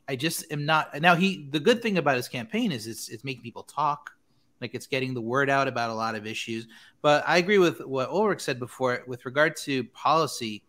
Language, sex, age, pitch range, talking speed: English, male, 30-49, 115-150 Hz, 230 wpm